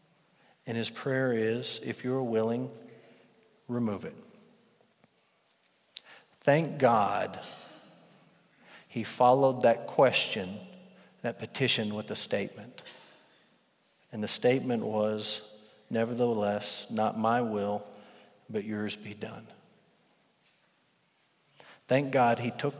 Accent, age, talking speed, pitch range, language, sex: American, 50-69, 95 wpm, 110-135 Hz, English, male